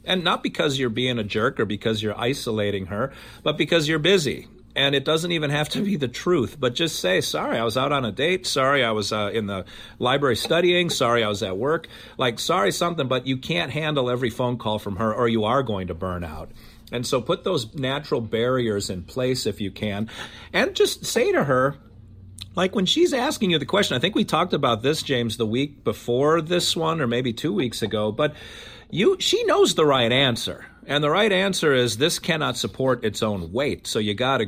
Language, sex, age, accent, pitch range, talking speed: English, male, 40-59, American, 110-150 Hz, 225 wpm